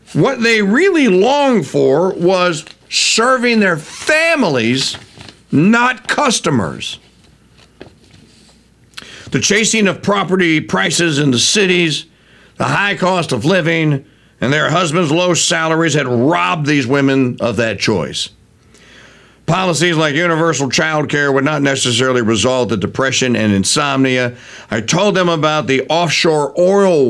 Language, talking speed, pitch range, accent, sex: English, 125 wpm, 115-165 Hz, American, male